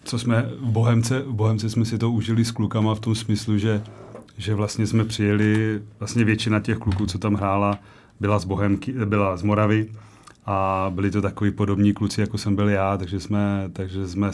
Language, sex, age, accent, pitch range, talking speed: Czech, male, 30-49, native, 100-110 Hz, 170 wpm